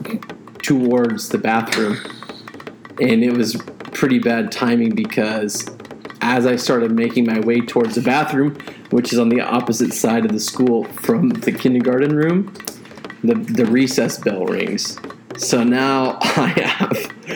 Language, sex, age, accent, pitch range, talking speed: English, male, 30-49, American, 115-140 Hz, 140 wpm